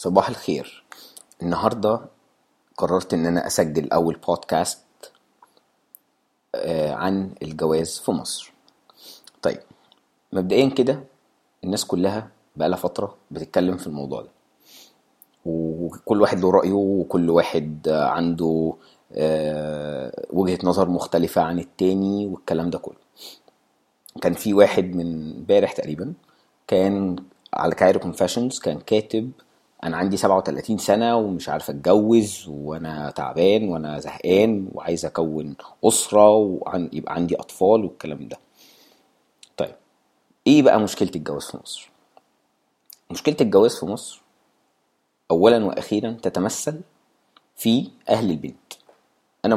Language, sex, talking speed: English, male, 105 wpm